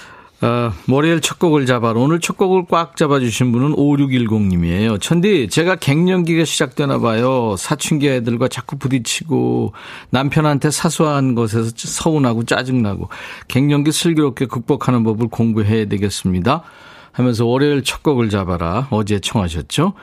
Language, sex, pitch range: Korean, male, 110-155 Hz